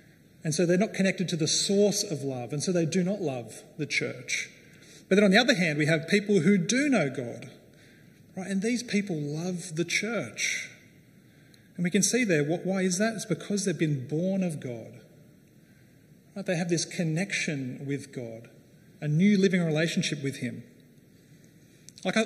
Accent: Australian